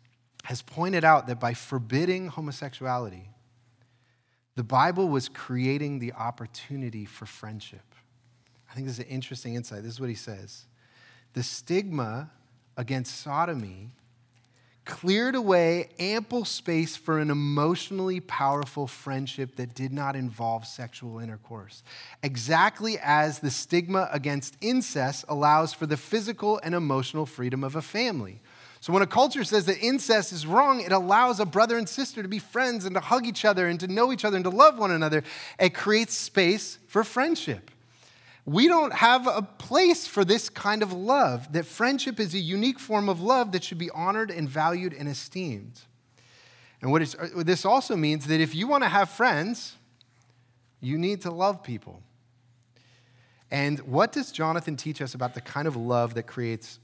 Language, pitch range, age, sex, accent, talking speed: English, 125-195 Hz, 30-49, male, American, 165 wpm